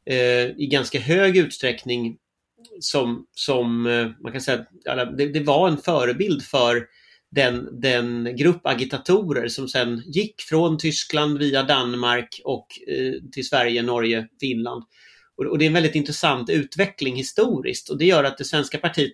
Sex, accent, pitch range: male, native, 125-160 Hz